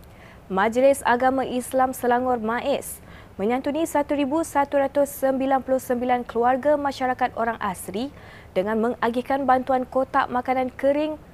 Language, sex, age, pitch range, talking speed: Malay, female, 20-39, 230-280 Hz, 90 wpm